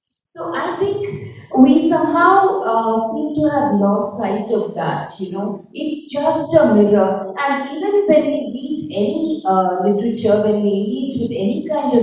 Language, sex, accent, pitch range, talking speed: English, female, Indian, 205-305 Hz, 175 wpm